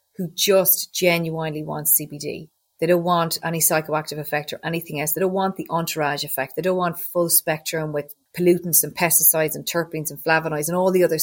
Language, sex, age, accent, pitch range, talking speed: English, female, 30-49, Irish, 155-180 Hz, 200 wpm